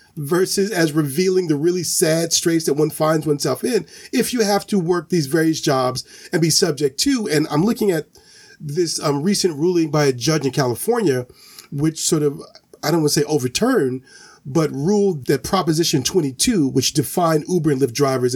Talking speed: 185 wpm